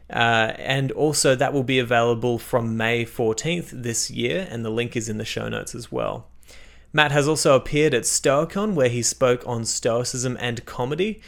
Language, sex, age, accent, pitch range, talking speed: English, male, 20-39, Australian, 115-135 Hz, 185 wpm